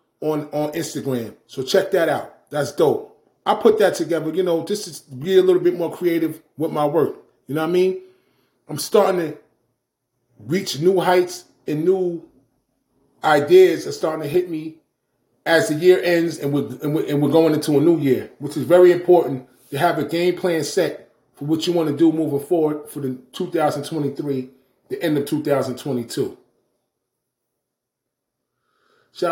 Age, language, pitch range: 30-49, English, 150-200 Hz